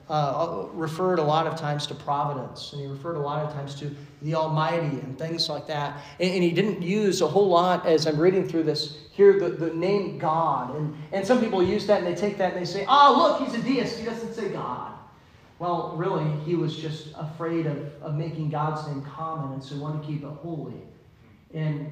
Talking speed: 225 wpm